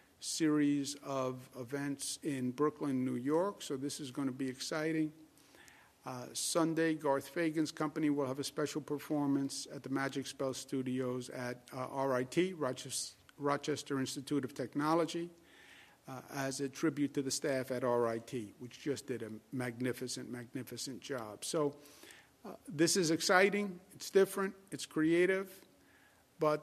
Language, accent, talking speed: English, American, 140 wpm